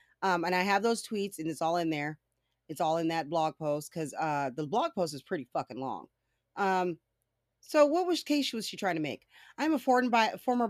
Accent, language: American, English